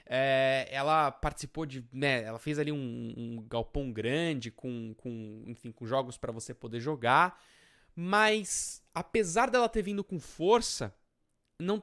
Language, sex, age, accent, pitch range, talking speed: Portuguese, male, 20-39, Brazilian, 125-180 Hz, 145 wpm